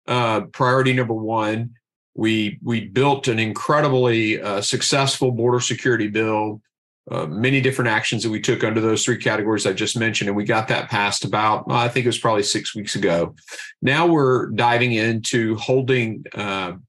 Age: 40-59